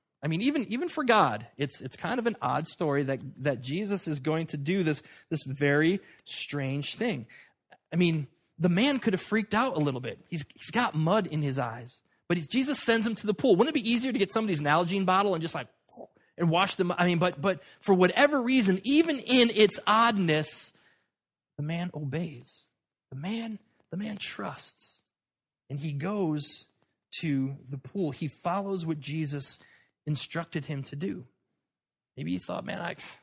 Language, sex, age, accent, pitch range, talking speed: English, male, 30-49, American, 130-190 Hz, 190 wpm